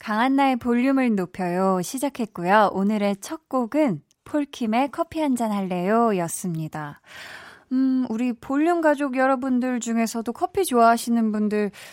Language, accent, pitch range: Korean, native, 190-280 Hz